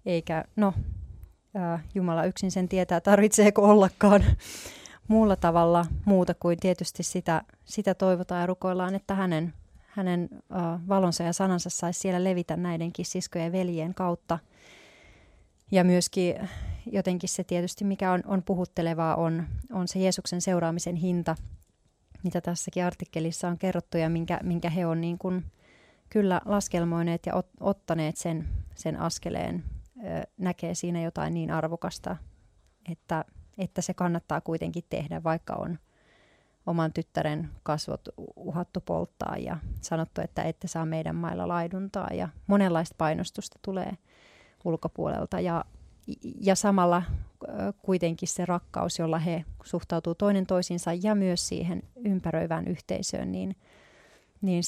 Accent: native